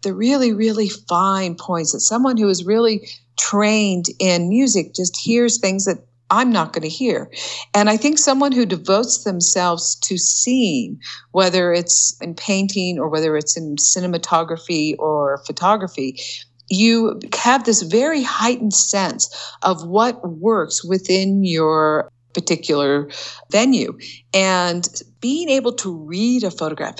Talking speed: 140 wpm